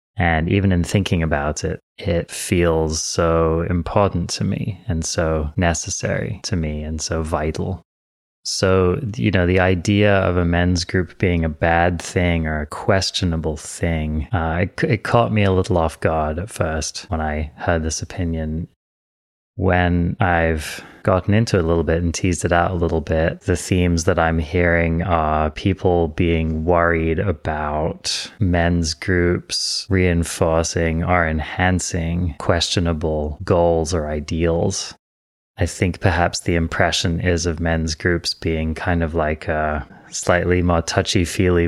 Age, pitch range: 30-49, 80-90 Hz